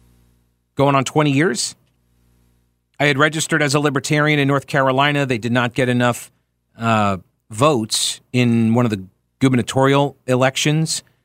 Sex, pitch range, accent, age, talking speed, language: male, 105-135 Hz, American, 40-59, 140 wpm, English